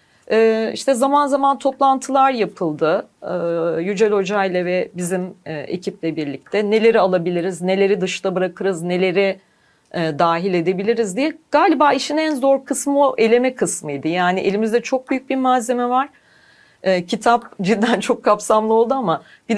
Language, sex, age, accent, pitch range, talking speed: Turkish, female, 40-59, native, 185-265 Hz, 130 wpm